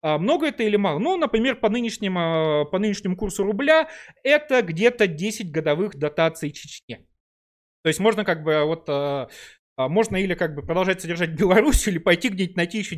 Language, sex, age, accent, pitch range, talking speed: Russian, male, 30-49, native, 155-230 Hz, 165 wpm